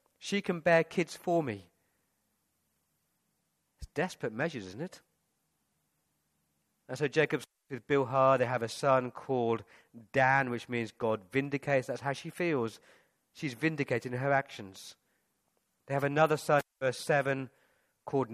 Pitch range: 125-160 Hz